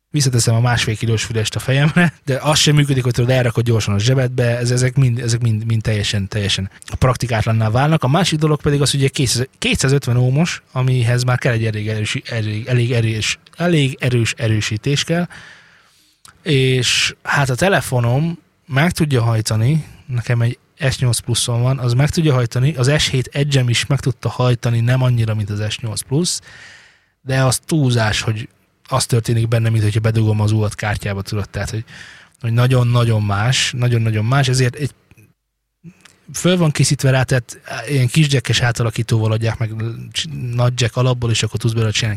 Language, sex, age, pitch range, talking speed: Hungarian, male, 20-39, 115-135 Hz, 165 wpm